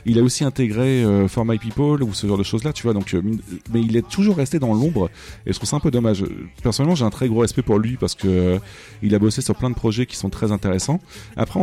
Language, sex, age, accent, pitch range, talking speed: French, male, 30-49, French, 100-125 Hz, 285 wpm